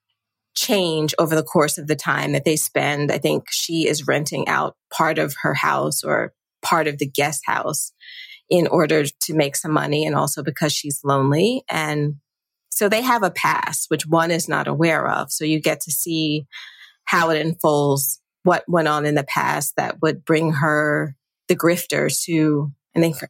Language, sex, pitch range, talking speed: English, female, 150-170 Hz, 185 wpm